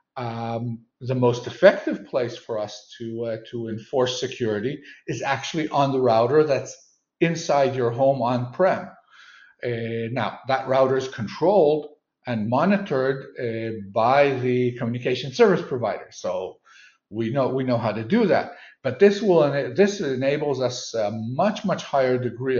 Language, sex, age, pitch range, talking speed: English, male, 50-69, 120-150 Hz, 150 wpm